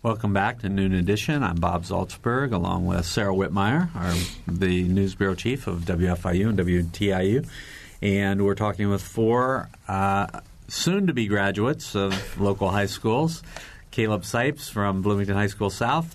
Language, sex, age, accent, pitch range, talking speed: English, male, 50-69, American, 95-115 Hz, 150 wpm